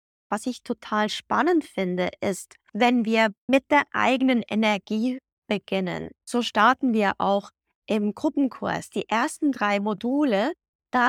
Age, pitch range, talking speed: 20-39, 205-270 Hz, 130 wpm